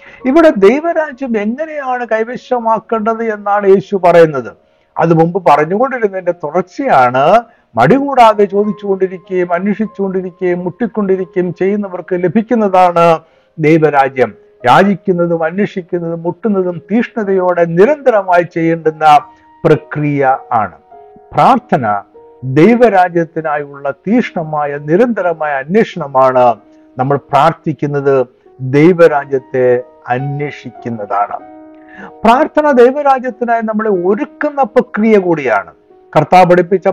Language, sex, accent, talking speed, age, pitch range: Malayalam, male, native, 70 wpm, 60-79, 155-225 Hz